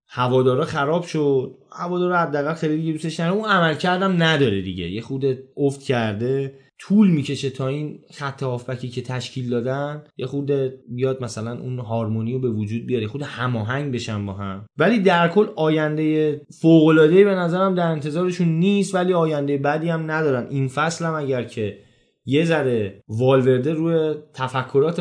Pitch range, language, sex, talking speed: 130-165 Hz, Persian, male, 155 wpm